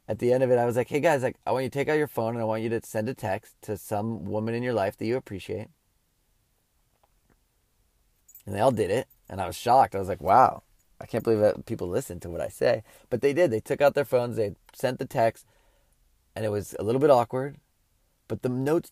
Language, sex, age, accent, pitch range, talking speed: English, male, 20-39, American, 95-130 Hz, 255 wpm